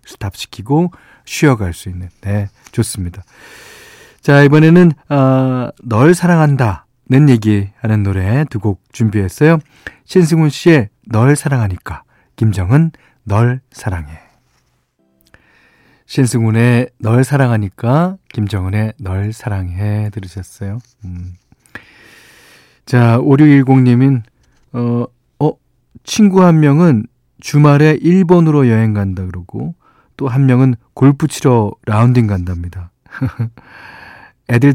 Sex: male